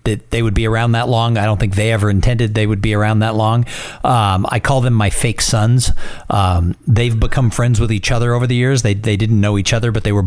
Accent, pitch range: American, 105-125 Hz